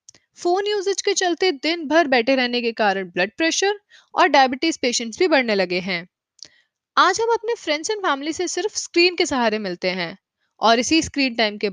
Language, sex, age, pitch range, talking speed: Hindi, female, 20-39, 220-320 Hz, 185 wpm